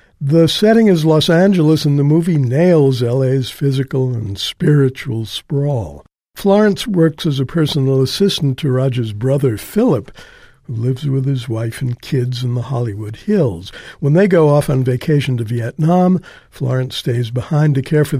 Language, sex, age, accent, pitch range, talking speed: English, male, 60-79, American, 125-155 Hz, 160 wpm